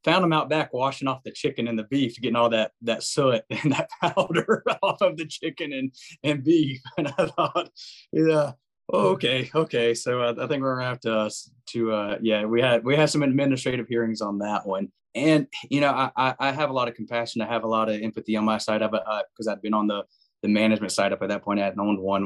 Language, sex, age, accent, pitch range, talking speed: English, male, 20-39, American, 100-125 Hz, 250 wpm